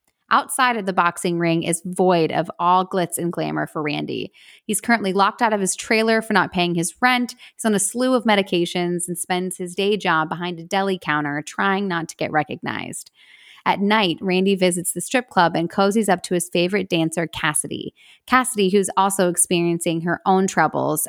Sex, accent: female, American